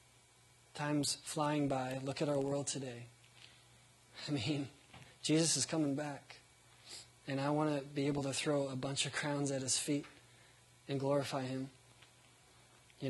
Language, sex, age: English, male, 20-39